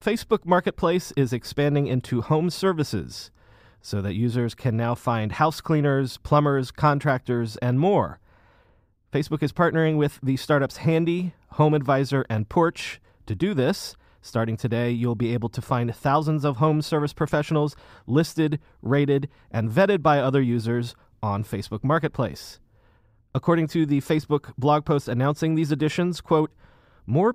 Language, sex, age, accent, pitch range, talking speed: English, male, 30-49, American, 115-155 Hz, 145 wpm